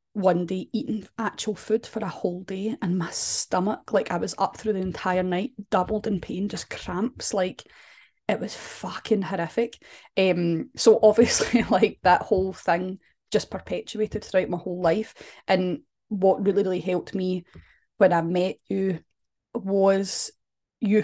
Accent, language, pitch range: British, English, 185-215 Hz